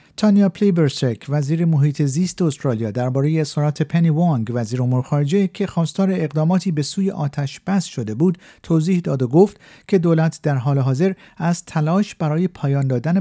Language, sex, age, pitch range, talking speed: Persian, male, 50-69, 135-170 Hz, 165 wpm